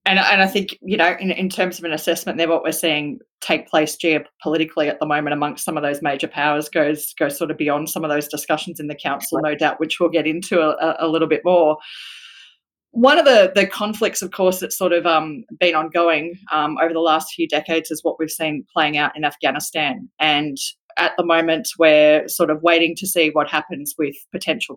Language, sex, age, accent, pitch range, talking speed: English, female, 20-39, Australian, 155-175 Hz, 225 wpm